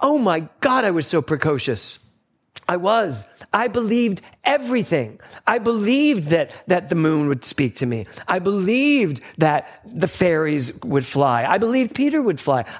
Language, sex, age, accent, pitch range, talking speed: English, male, 40-59, American, 130-215 Hz, 160 wpm